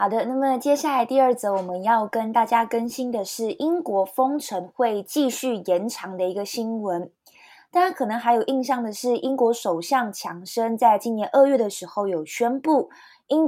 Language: Chinese